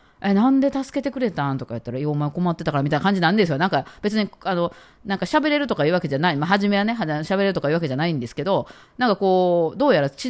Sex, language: female, Japanese